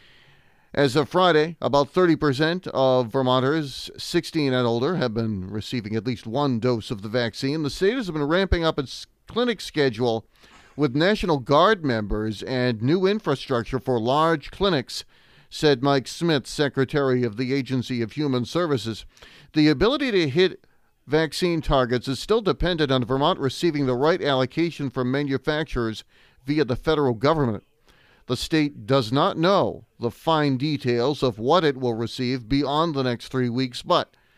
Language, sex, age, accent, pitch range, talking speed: English, male, 40-59, American, 125-160 Hz, 155 wpm